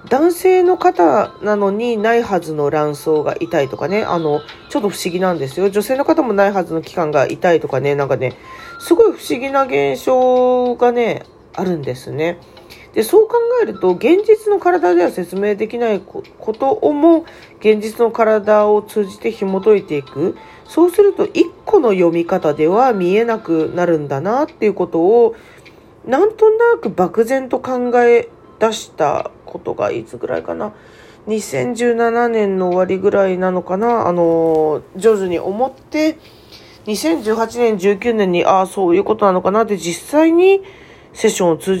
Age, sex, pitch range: 40-59, female, 175-260 Hz